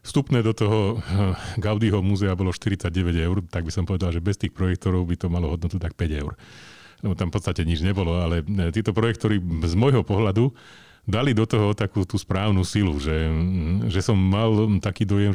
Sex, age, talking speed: male, 40-59, 190 wpm